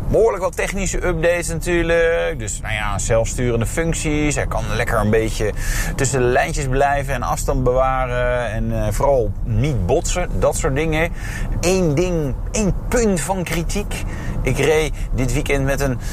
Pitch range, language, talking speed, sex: 110-150 Hz, Dutch, 155 wpm, male